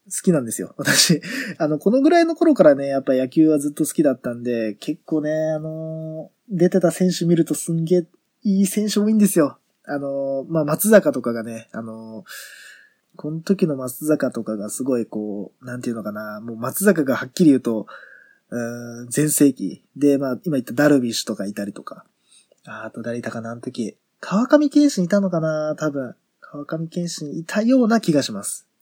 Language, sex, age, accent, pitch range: Japanese, male, 20-39, native, 120-185 Hz